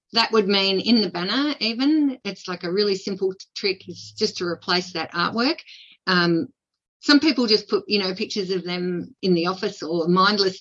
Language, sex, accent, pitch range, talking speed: English, female, Australian, 170-205 Hz, 190 wpm